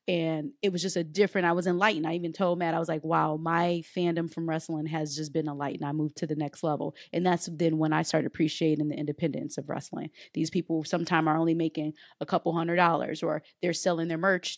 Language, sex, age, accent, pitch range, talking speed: English, female, 30-49, American, 165-205 Hz, 235 wpm